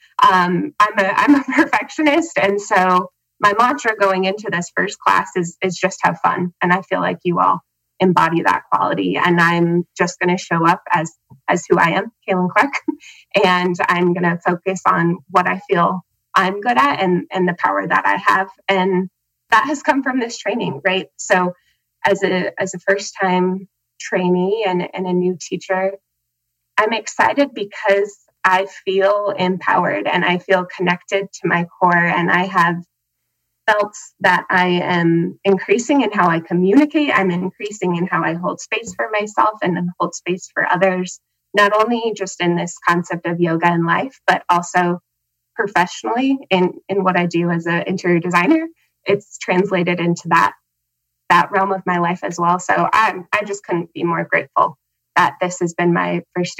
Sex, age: female, 20-39